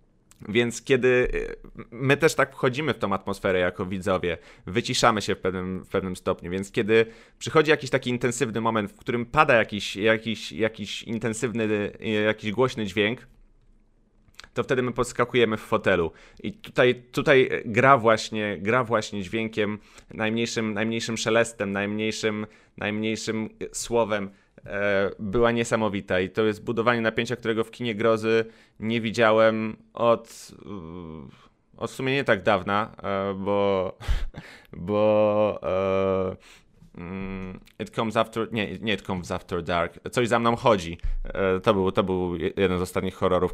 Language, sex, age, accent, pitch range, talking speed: Polish, male, 30-49, native, 95-115 Hz, 130 wpm